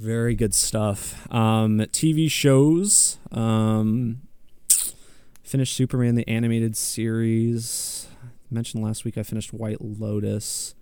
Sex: male